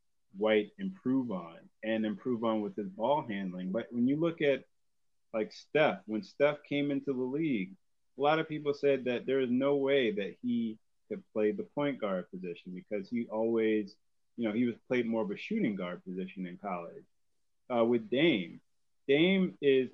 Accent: American